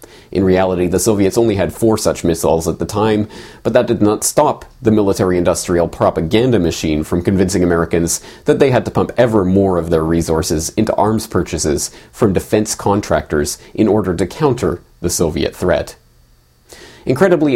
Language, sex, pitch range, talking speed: English, male, 85-110 Hz, 165 wpm